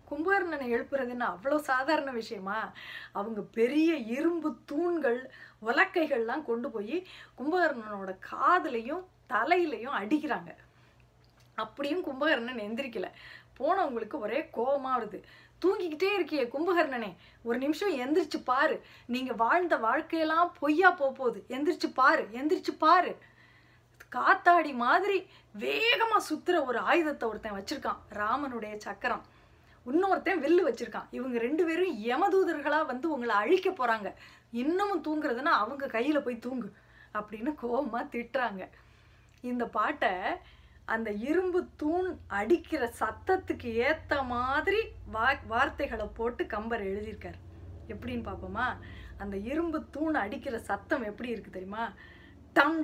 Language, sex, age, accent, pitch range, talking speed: Tamil, female, 30-49, native, 230-335 Hz, 105 wpm